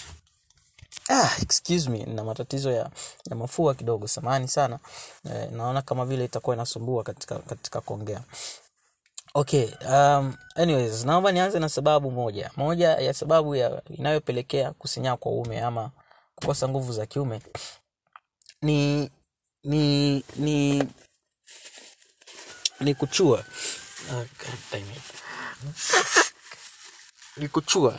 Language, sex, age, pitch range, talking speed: Swahili, male, 20-39, 125-155 Hz, 105 wpm